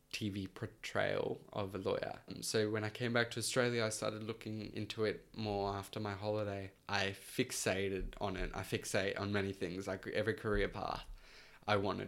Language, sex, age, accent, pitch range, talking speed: English, male, 10-29, Australian, 100-110 Hz, 185 wpm